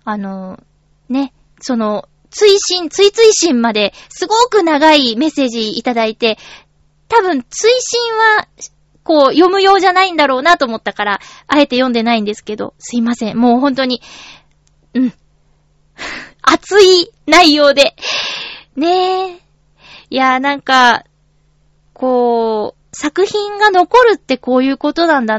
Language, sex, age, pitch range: Japanese, female, 20-39, 225-350 Hz